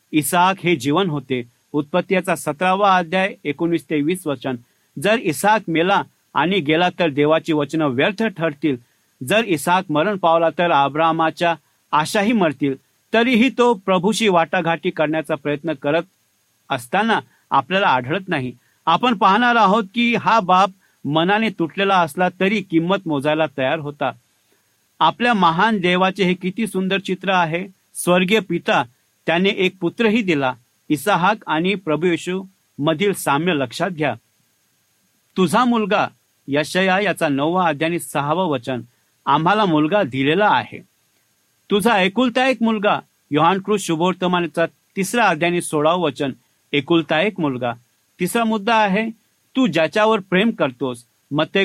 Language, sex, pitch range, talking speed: English, male, 150-200 Hz, 120 wpm